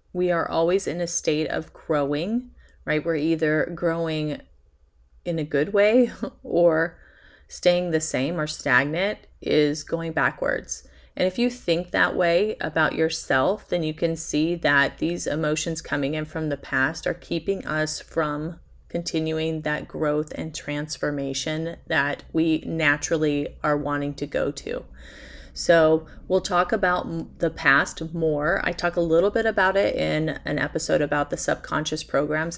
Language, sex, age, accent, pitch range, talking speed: English, female, 30-49, American, 145-170 Hz, 155 wpm